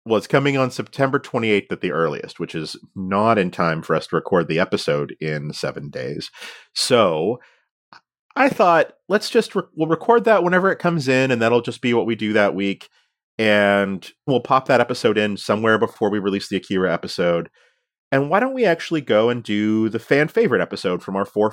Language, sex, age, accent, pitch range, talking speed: English, male, 30-49, American, 95-135 Hz, 200 wpm